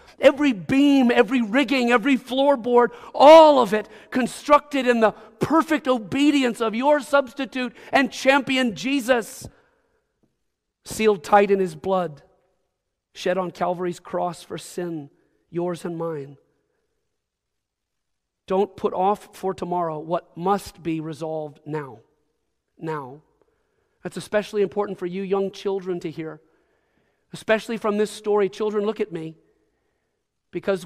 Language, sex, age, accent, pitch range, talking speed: English, male, 40-59, American, 175-230 Hz, 125 wpm